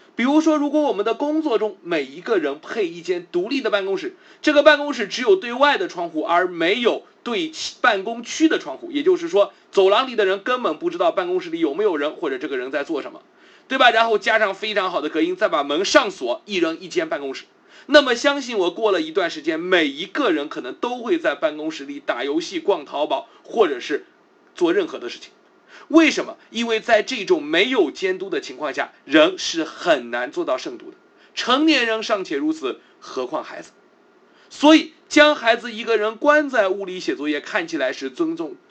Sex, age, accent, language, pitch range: male, 30-49, native, Chinese, 230-360 Hz